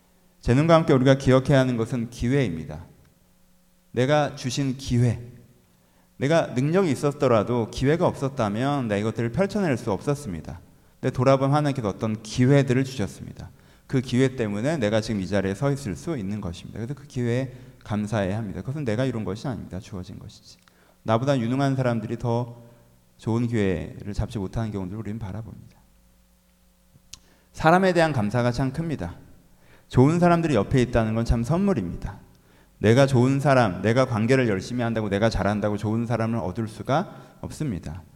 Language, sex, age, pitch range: Korean, male, 30-49, 100-135 Hz